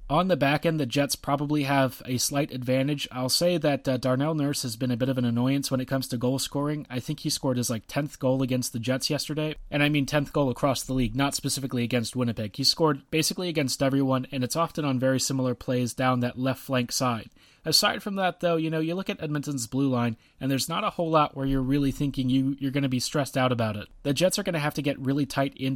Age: 30-49